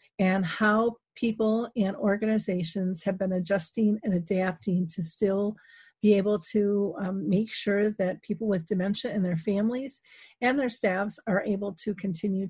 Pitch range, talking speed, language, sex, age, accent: 180-210 Hz, 155 wpm, English, female, 40-59, American